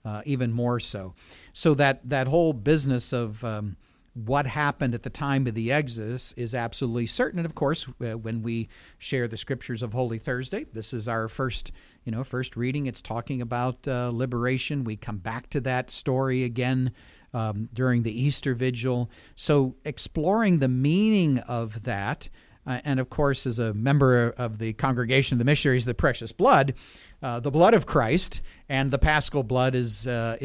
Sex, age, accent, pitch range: male, 40-59, American, 115-140 Hz